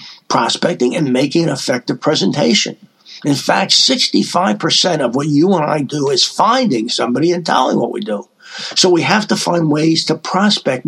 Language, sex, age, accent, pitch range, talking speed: English, male, 50-69, American, 140-180 Hz, 170 wpm